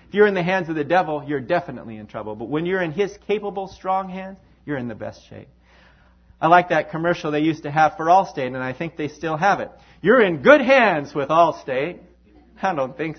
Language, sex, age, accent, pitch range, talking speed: English, male, 40-59, American, 130-190 Hz, 230 wpm